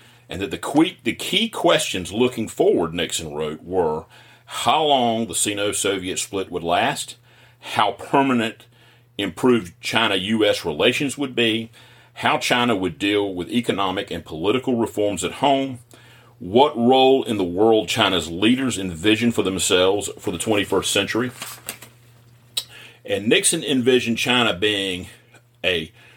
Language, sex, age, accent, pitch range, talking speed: English, male, 40-59, American, 115-130 Hz, 125 wpm